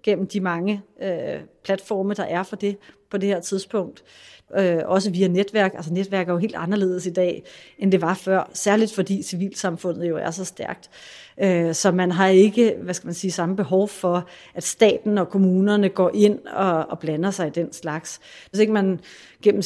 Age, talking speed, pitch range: 30-49, 175 wpm, 180-205 Hz